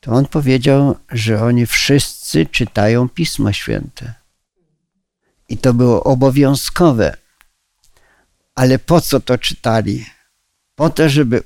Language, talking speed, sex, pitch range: Polish, 110 wpm, male, 115-140 Hz